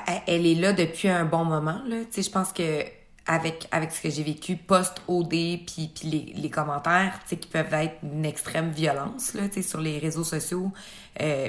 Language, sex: French, female